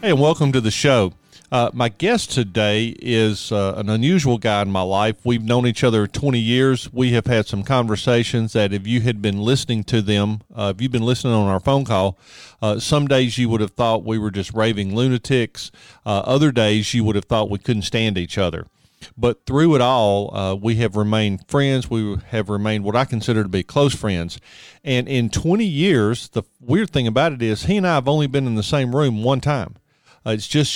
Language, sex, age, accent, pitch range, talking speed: English, male, 40-59, American, 105-130 Hz, 220 wpm